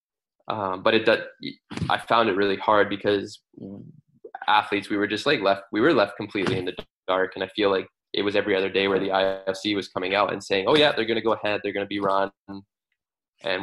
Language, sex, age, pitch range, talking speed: English, male, 20-39, 95-105 Hz, 220 wpm